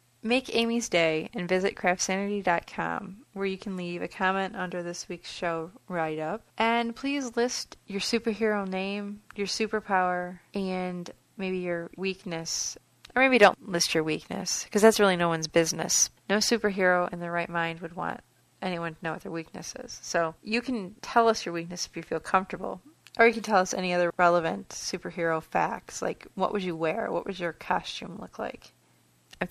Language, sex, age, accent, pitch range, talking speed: English, female, 30-49, American, 165-205 Hz, 180 wpm